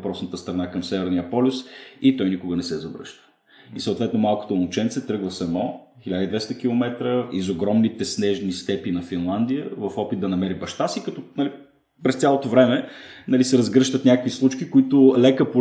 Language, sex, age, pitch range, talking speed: Bulgarian, male, 30-49, 105-130 Hz, 165 wpm